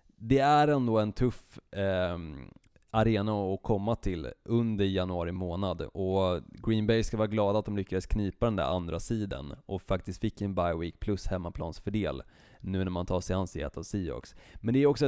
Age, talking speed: 20-39, 190 wpm